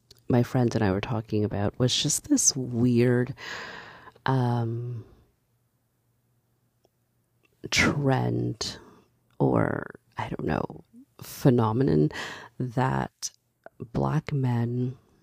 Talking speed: 85 wpm